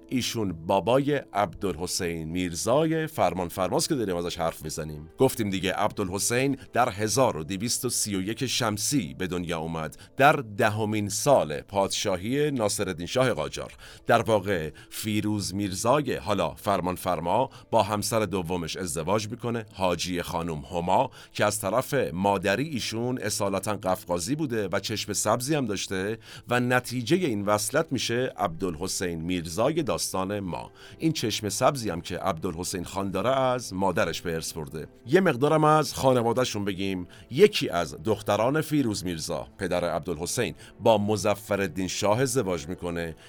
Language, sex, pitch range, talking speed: Persian, male, 95-120 Hz, 130 wpm